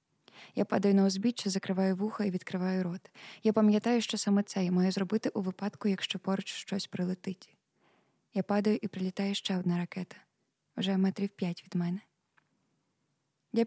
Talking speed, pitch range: 160 wpm, 185-215 Hz